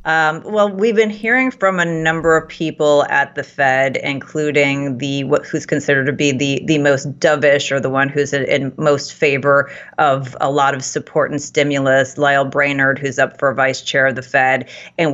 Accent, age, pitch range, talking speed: American, 30-49, 145-210 Hz, 200 wpm